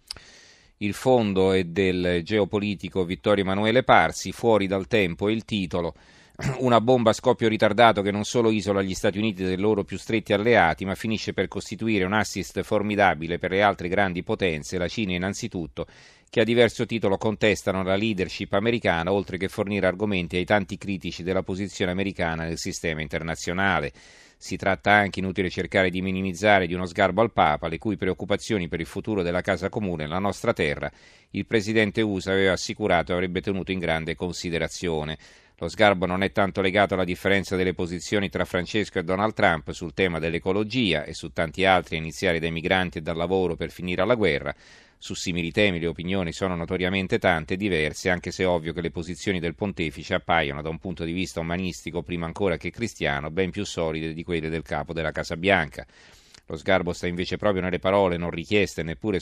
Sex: male